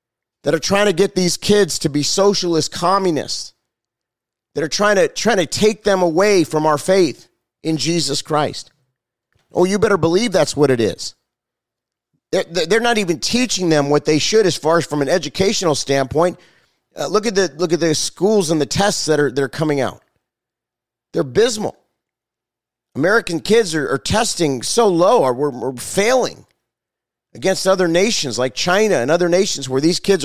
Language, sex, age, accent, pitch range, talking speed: English, male, 30-49, American, 150-200 Hz, 180 wpm